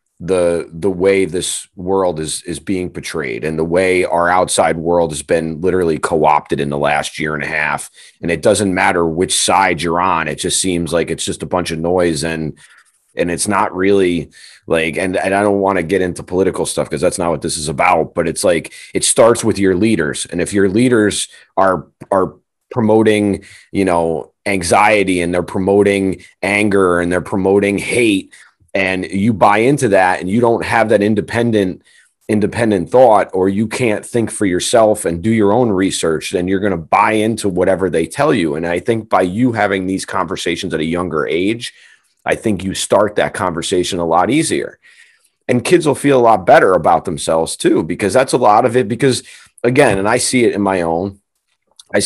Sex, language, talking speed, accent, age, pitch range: male, English, 200 wpm, American, 30-49, 85-105 Hz